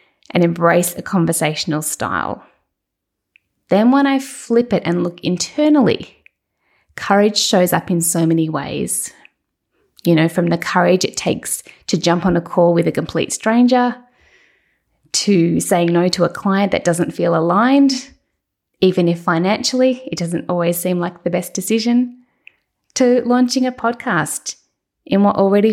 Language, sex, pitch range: English, female, 170-240 Hz